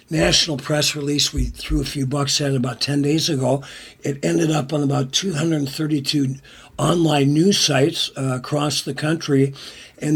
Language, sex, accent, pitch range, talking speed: English, male, American, 130-150 Hz, 160 wpm